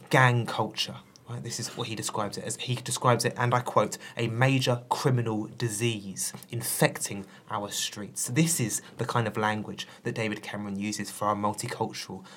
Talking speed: 180 wpm